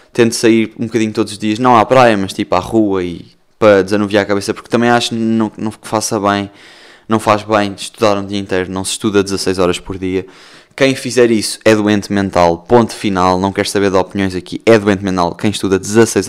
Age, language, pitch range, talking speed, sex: 20-39, Portuguese, 100-125 Hz, 225 wpm, male